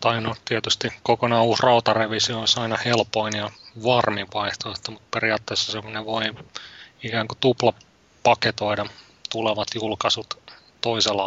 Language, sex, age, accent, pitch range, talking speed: Finnish, male, 30-49, native, 105-120 Hz, 115 wpm